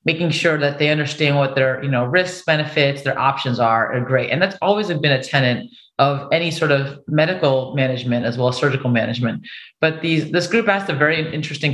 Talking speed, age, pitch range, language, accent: 210 wpm, 30-49, 130-160 Hz, English, American